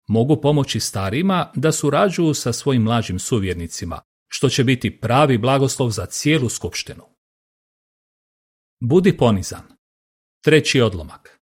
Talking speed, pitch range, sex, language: 110 wpm, 115-155 Hz, male, Croatian